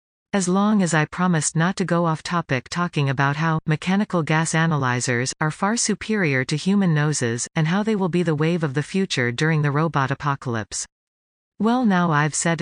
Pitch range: 140-180 Hz